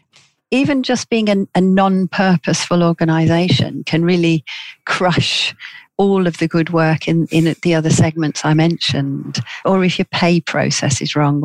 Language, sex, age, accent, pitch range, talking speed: English, female, 50-69, British, 150-180 Hz, 150 wpm